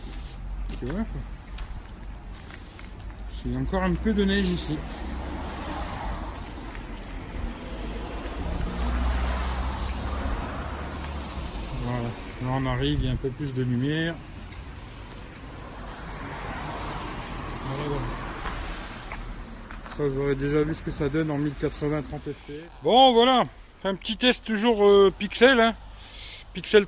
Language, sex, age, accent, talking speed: French, male, 60-79, French, 90 wpm